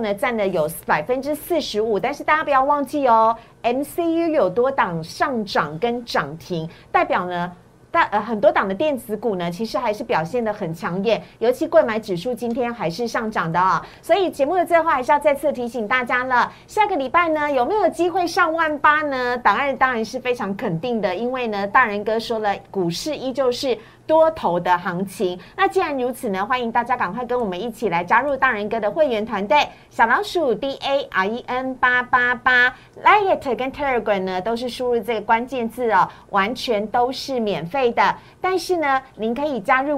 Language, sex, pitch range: Chinese, female, 210-285 Hz